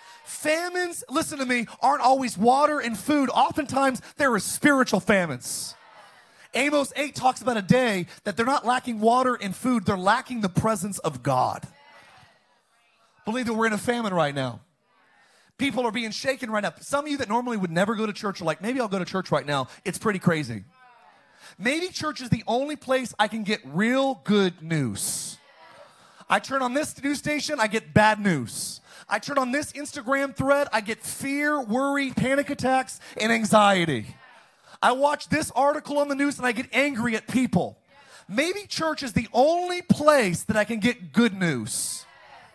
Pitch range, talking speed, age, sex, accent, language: 195-265 Hz, 185 wpm, 30-49, male, American, English